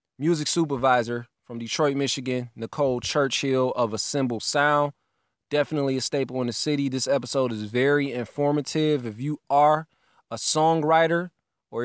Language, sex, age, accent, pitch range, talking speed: English, male, 20-39, American, 120-145 Hz, 135 wpm